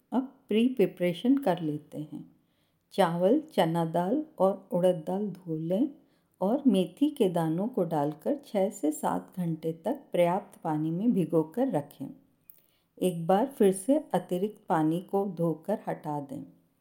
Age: 50-69